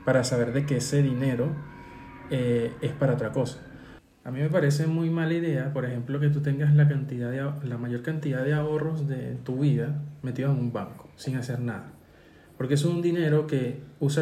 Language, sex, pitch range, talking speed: Spanish, male, 125-150 Hz, 190 wpm